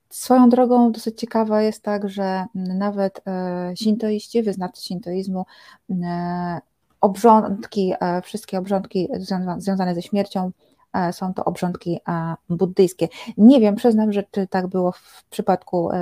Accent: native